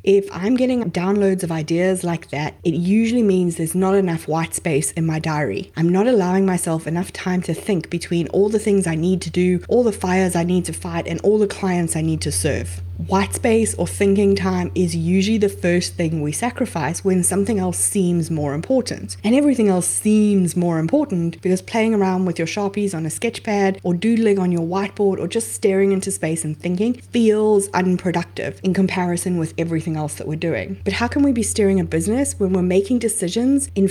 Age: 20-39